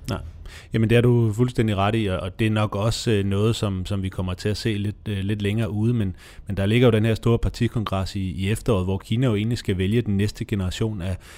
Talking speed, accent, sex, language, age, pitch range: 250 wpm, native, male, Danish, 30-49, 95-115 Hz